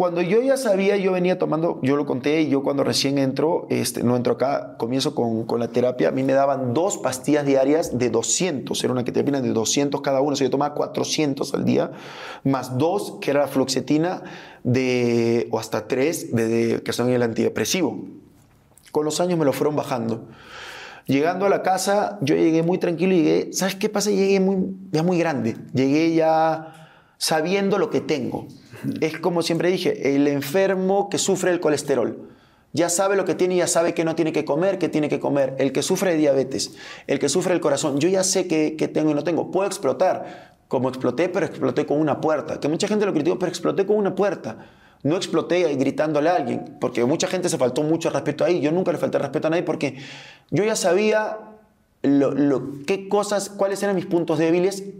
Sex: male